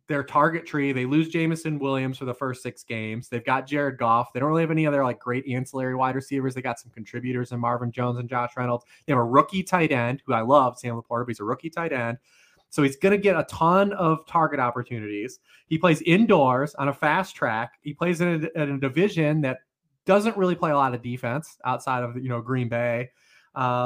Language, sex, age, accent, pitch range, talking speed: English, male, 20-39, American, 125-155 Hz, 235 wpm